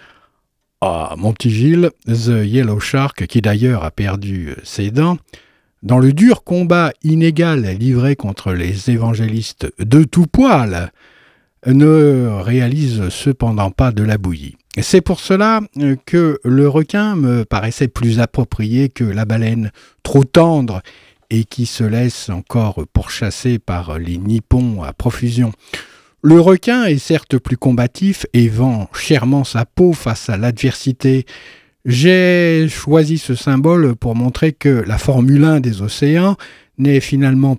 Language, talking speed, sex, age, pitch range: French, 135 wpm, male, 50-69, 110-155 Hz